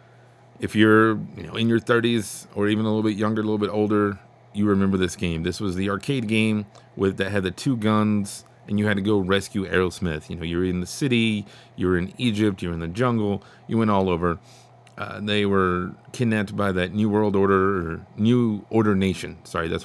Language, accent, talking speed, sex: English, American, 205 wpm, male